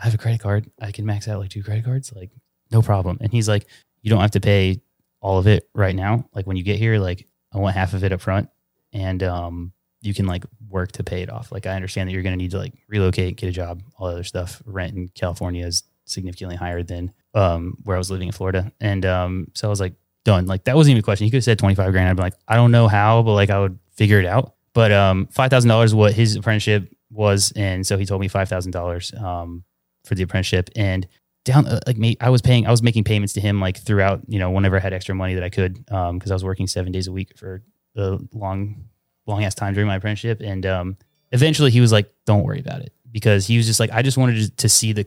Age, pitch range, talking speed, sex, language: 20-39, 95-110 Hz, 270 wpm, male, English